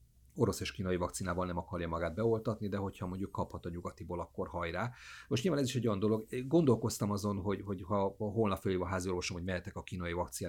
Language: Hungarian